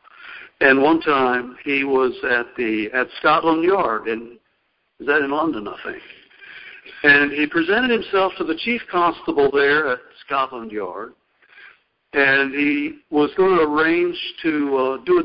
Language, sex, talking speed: English, male, 155 wpm